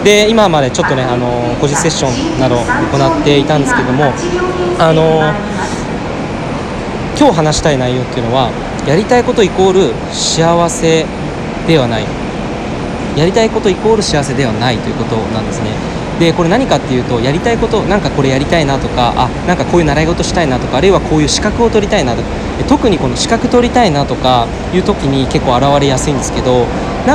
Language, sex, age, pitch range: Japanese, male, 20-39, 135-205 Hz